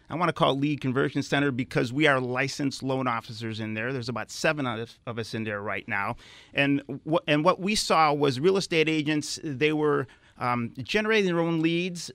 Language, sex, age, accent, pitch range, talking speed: English, male, 40-59, American, 125-150 Hz, 205 wpm